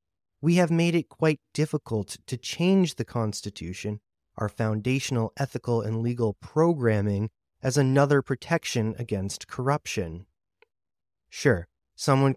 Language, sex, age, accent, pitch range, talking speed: English, male, 30-49, American, 105-140 Hz, 110 wpm